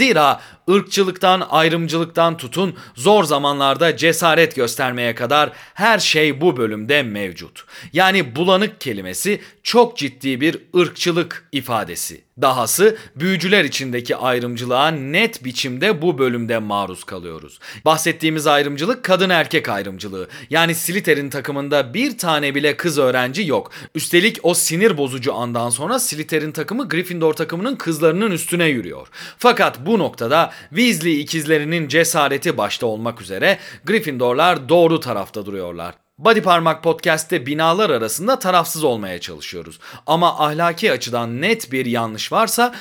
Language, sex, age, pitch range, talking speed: Turkish, male, 40-59, 135-190 Hz, 120 wpm